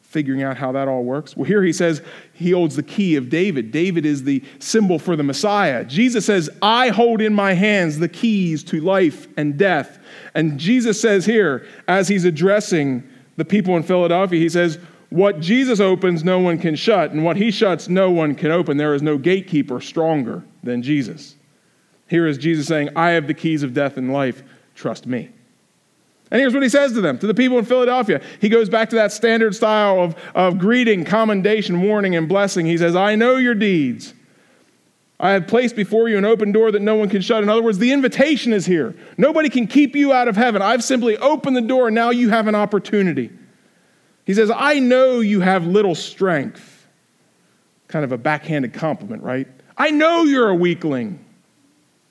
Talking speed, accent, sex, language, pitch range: 200 wpm, American, male, English, 165-225 Hz